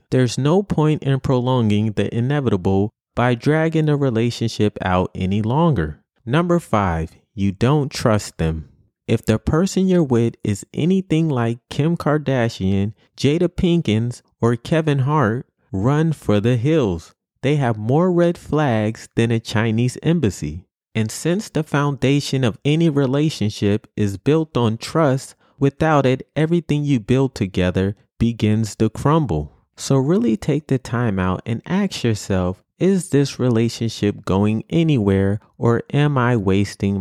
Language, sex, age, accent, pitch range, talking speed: English, male, 30-49, American, 105-150 Hz, 140 wpm